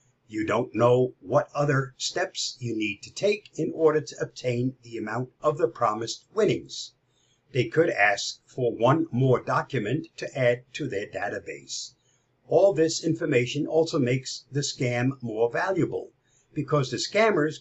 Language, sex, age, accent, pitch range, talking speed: English, male, 50-69, American, 125-160 Hz, 150 wpm